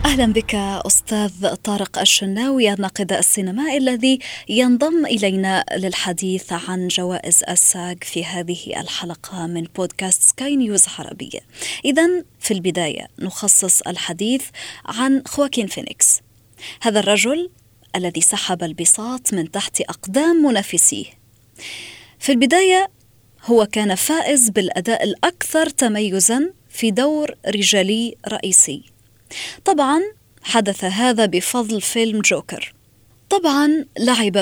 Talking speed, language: 105 wpm, Arabic